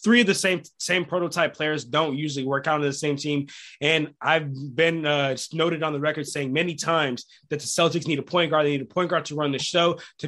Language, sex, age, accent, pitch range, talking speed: English, male, 20-39, American, 150-195 Hz, 250 wpm